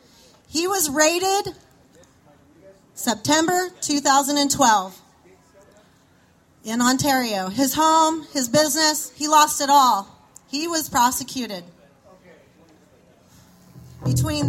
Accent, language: American, English